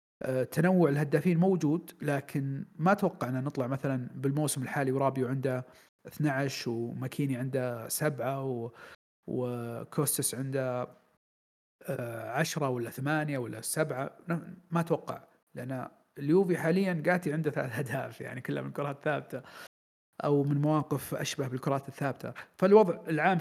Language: Arabic